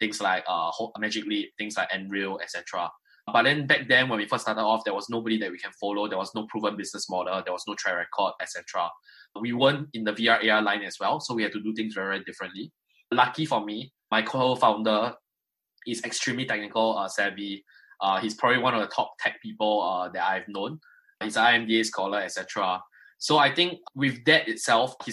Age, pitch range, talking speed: 10-29, 100-115 Hz, 220 wpm